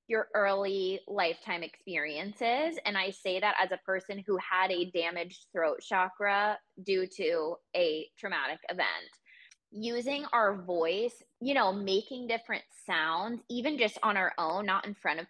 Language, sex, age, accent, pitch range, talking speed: English, female, 20-39, American, 185-245 Hz, 155 wpm